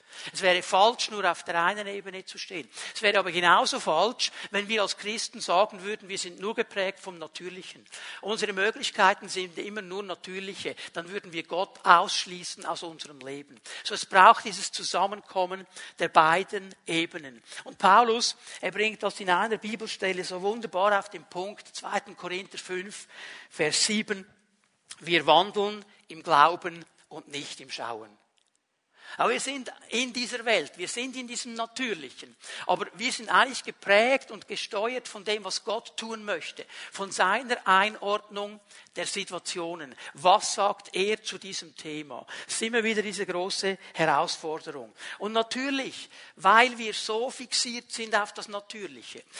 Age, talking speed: 60-79, 155 wpm